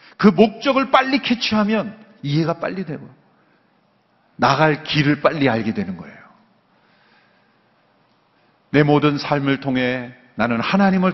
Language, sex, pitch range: Korean, male, 125-190 Hz